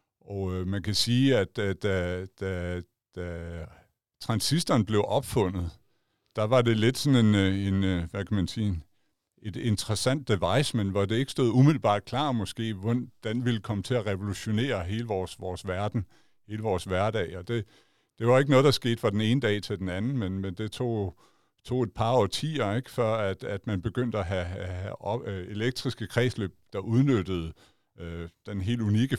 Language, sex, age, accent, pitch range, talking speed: Danish, male, 60-79, native, 100-120 Hz, 180 wpm